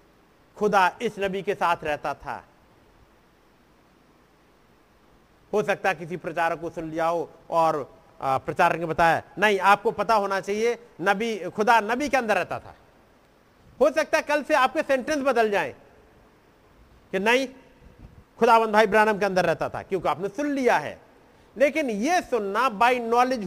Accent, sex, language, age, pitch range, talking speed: native, male, Hindi, 50-69, 160-245 Hz, 150 wpm